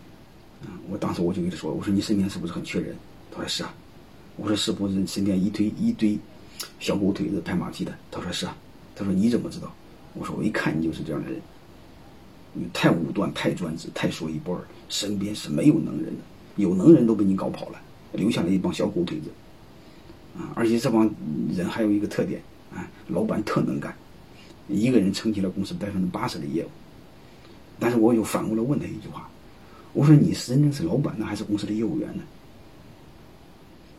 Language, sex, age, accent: Chinese, male, 30-49, native